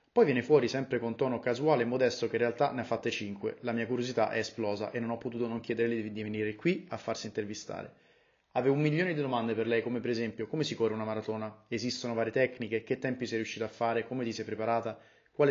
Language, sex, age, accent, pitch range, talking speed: Italian, male, 30-49, native, 115-130 Hz, 240 wpm